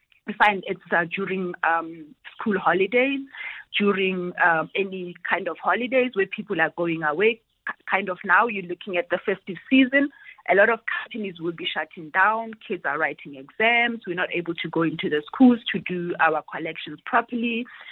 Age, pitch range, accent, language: 30-49, 170-210 Hz, South African, English